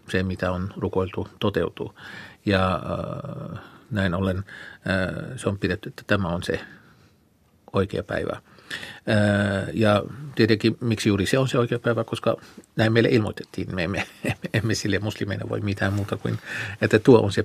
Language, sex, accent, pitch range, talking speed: Finnish, male, native, 95-115 Hz, 150 wpm